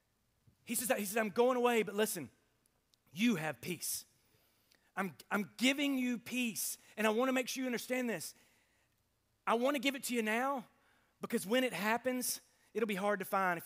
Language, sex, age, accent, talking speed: English, male, 30-49, American, 190 wpm